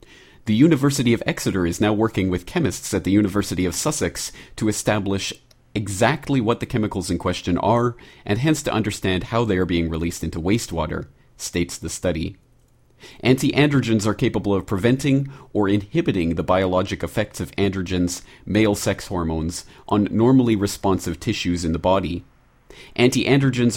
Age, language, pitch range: 40-59, English, 90-115 Hz